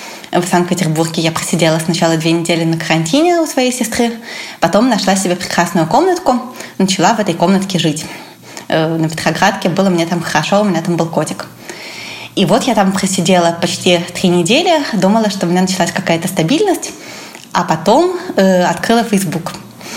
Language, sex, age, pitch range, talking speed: Russian, female, 20-39, 170-215 Hz, 155 wpm